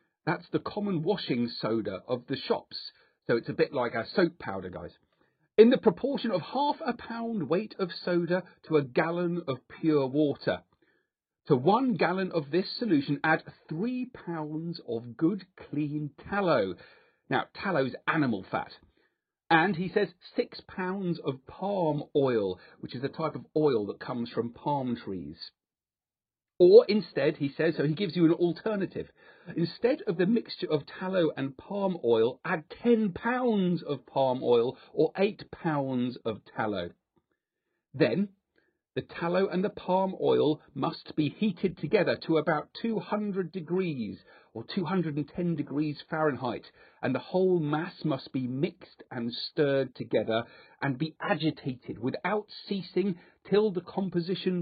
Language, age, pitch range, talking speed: English, 40-59, 145-190 Hz, 150 wpm